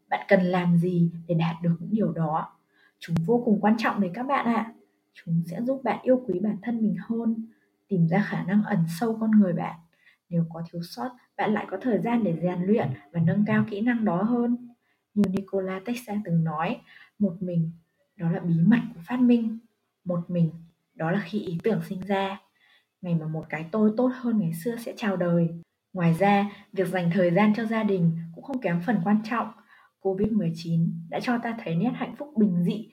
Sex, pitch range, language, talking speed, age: female, 175-220 Hz, Vietnamese, 215 wpm, 20-39